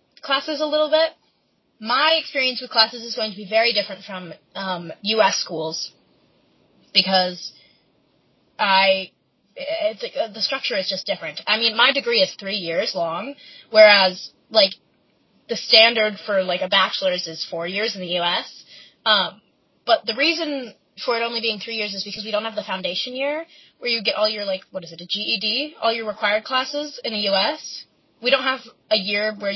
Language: English